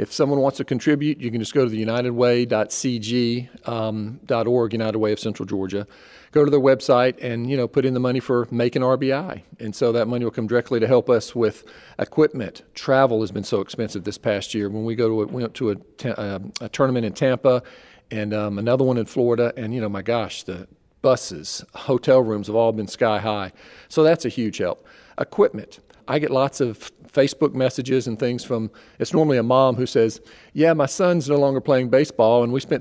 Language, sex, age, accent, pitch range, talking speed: English, male, 40-59, American, 115-140 Hz, 210 wpm